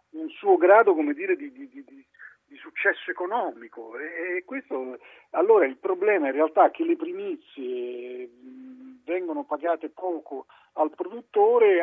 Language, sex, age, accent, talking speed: Italian, male, 50-69, native, 145 wpm